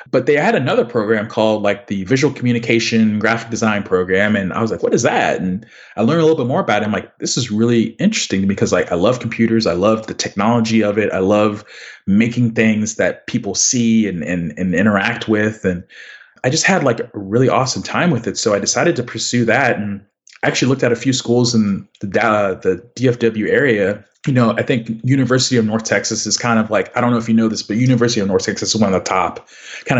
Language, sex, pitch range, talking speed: English, male, 100-120 Hz, 240 wpm